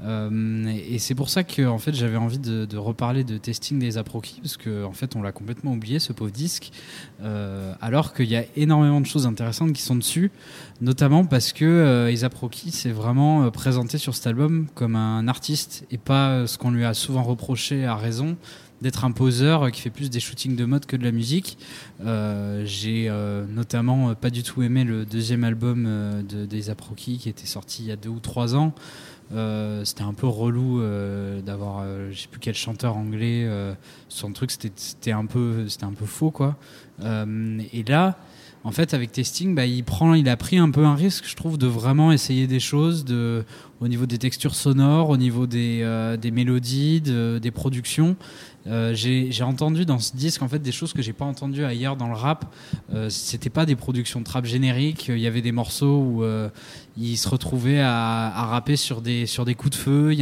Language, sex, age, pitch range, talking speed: French, male, 20-39, 115-140 Hz, 225 wpm